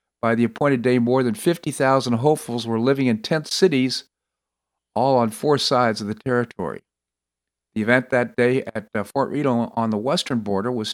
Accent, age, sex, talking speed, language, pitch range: American, 50-69, male, 175 wpm, English, 115-145 Hz